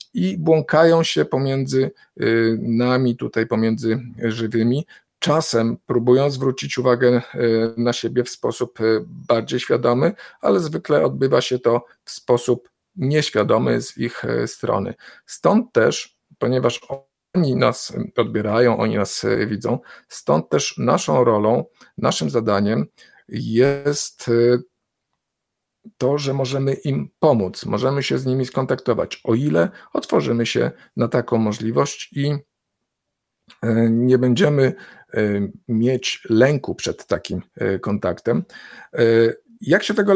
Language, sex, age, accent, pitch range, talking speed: Polish, male, 40-59, native, 115-140 Hz, 110 wpm